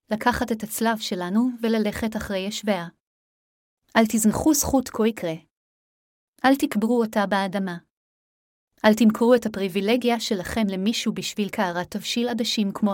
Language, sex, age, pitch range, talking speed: Hebrew, female, 30-49, 195-235 Hz, 125 wpm